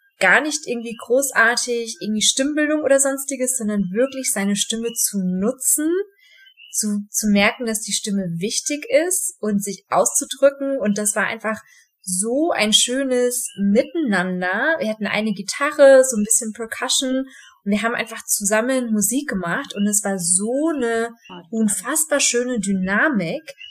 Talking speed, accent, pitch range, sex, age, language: 140 wpm, German, 220-275 Hz, female, 20-39, German